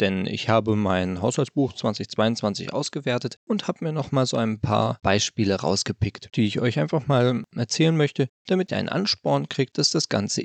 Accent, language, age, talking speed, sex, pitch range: German, German, 20-39, 185 wpm, male, 110-140 Hz